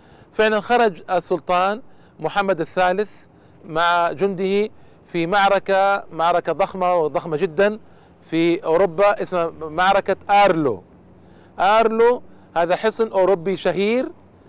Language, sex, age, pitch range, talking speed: Arabic, male, 40-59, 170-210 Hz, 95 wpm